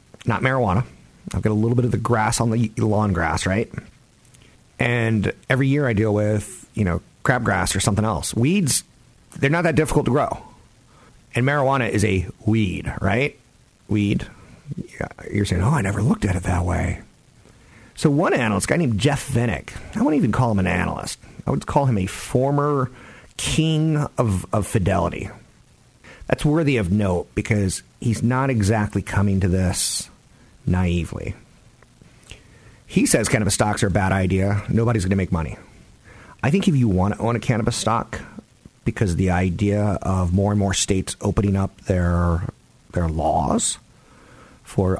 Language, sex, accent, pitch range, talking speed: English, male, American, 95-120 Hz, 165 wpm